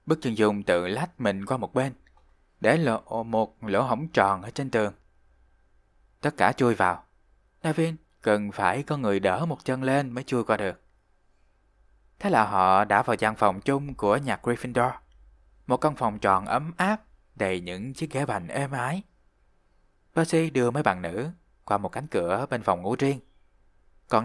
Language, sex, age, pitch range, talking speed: Vietnamese, male, 20-39, 90-135 Hz, 180 wpm